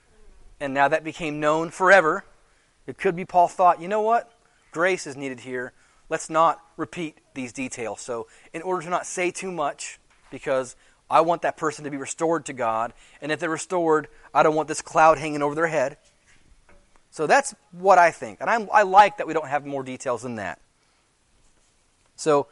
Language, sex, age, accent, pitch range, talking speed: English, male, 30-49, American, 150-185 Hz, 190 wpm